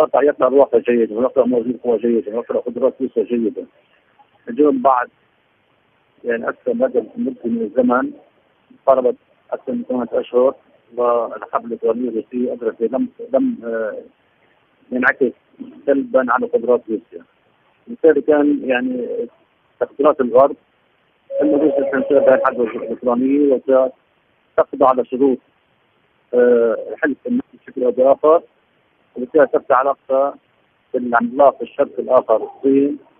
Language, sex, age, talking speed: Arabic, male, 50-69, 120 wpm